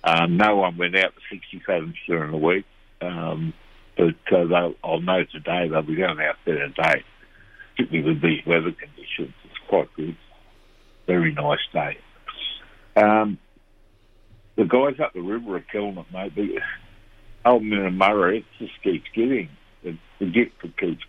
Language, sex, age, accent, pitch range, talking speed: English, male, 60-79, American, 85-105 Hz, 160 wpm